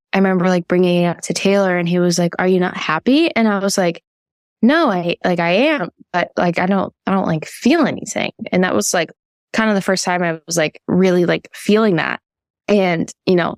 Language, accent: English, American